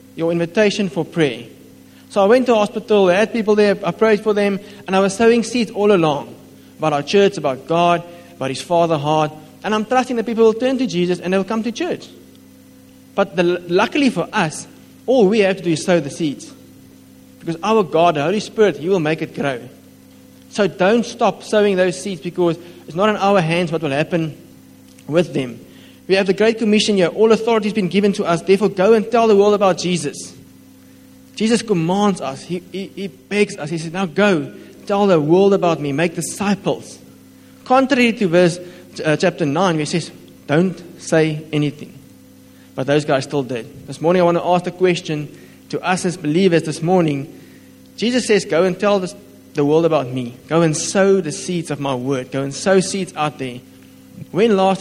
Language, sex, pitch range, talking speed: English, male, 150-205 Hz, 205 wpm